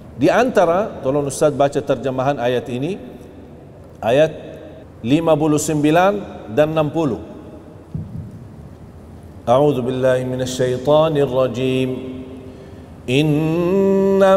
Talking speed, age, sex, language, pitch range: 65 wpm, 40-59, male, Indonesian, 130-165 Hz